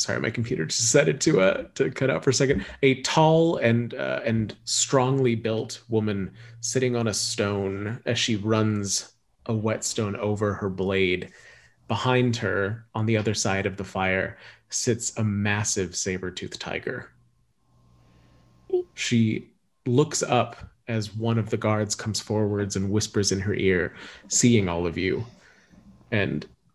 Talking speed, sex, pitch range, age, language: 155 wpm, male, 95-125 Hz, 30-49, English